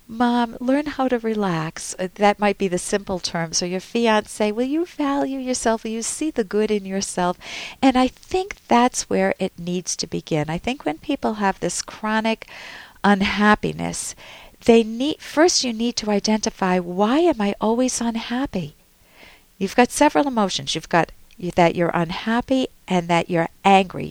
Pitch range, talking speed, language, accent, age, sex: 175-240 Hz, 165 wpm, English, American, 50-69, female